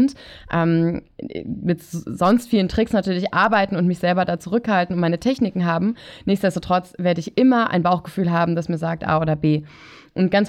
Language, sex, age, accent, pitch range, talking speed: German, female, 20-39, German, 170-210 Hz, 170 wpm